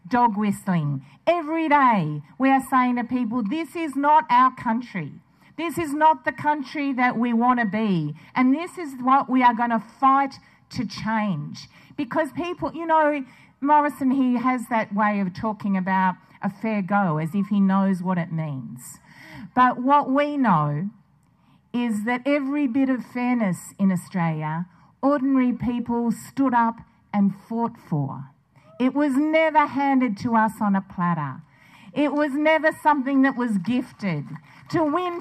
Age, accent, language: 50-69, Australian, English